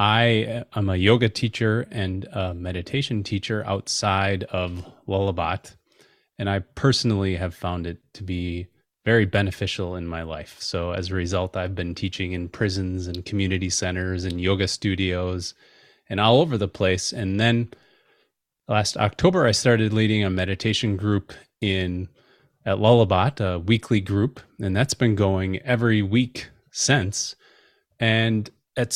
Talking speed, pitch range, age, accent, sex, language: 145 wpm, 95-115 Hz, 30-49, American, male, English